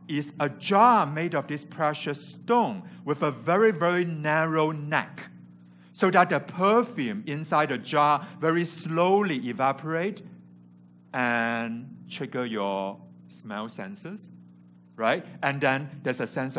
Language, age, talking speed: English, 60-79, 125 wpm